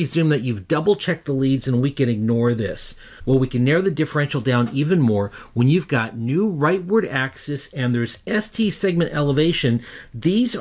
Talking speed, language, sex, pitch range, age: 175 wpm, English, male, 120-165 Hz, 50-69